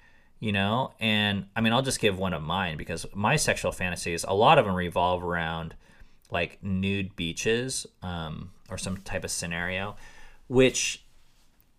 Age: 30-49